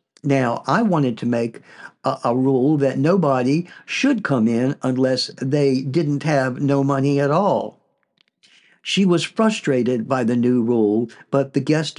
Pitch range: 130-165 Hz